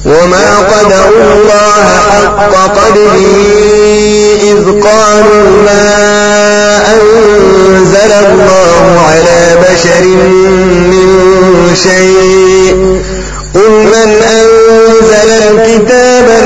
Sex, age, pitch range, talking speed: male, 50-69, 185-215 Hz, 65 wpm